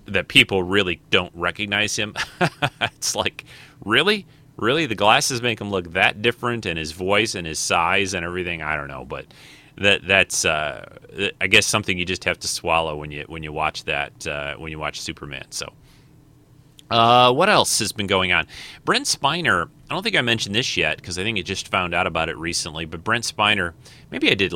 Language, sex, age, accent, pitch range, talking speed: English, male, 30-49, American, 85-115 Hz, 205 wpm